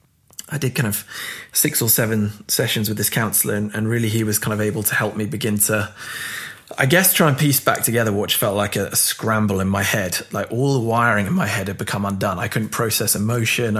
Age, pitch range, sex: 20-39, 100-120 Hz, male